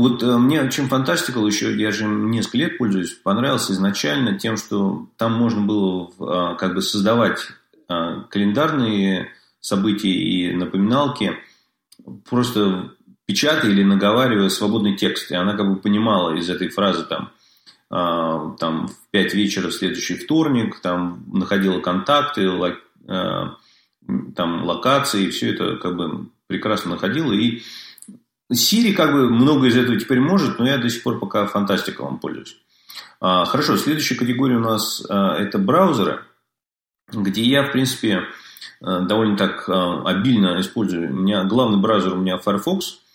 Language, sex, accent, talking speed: Russian, male, native, 140 wpm